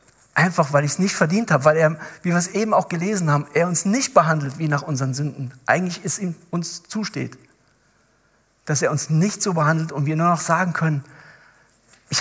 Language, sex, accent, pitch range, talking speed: German, male, German, 140-185 Hz, 205 wpm